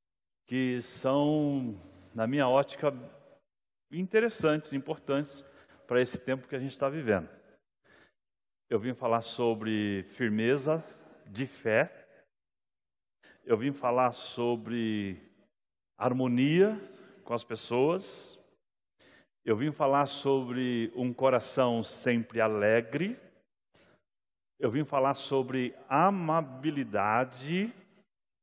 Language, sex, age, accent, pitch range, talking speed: Portuguese, male, 60-79, Brazilian, 115-150 Hz, 90 wpm